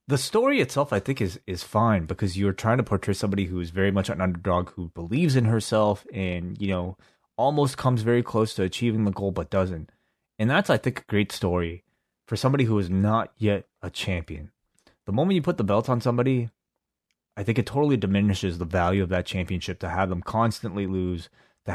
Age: 20-39